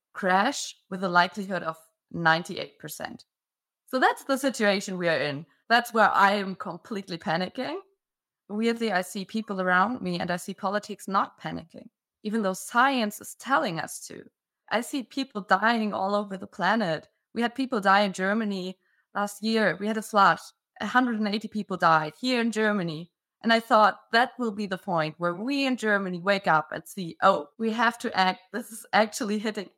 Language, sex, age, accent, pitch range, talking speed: English, female, 20-39, German, 190-230 Hz, 180 wpm